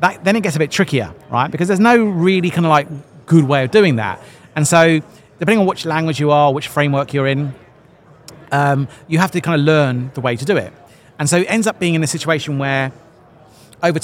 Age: 40-59